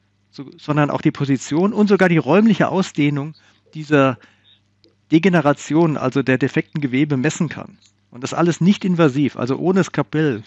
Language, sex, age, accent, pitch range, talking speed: German, male, 50-69, German, 105-165 Hz, 145 wpm